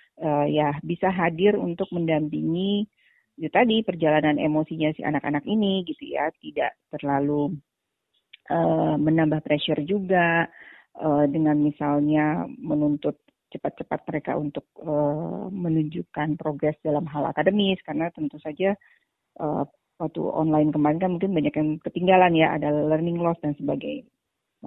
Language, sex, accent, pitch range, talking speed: Indonesian, female, native, 150-175 Hz, 125 wpm